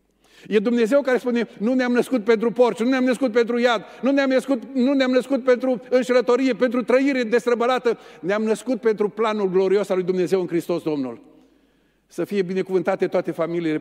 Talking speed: 180 wpm